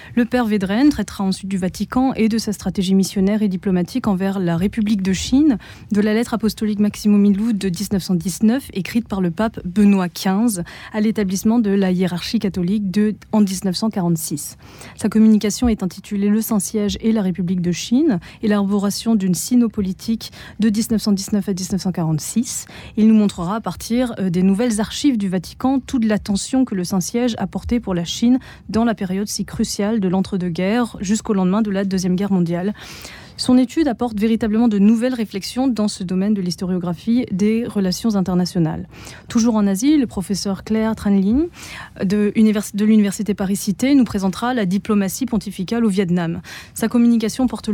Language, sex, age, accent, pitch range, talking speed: French, female, 20-39, French, 190-225 Hz, 165 wpm